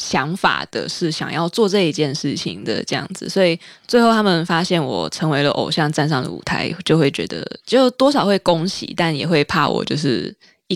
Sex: female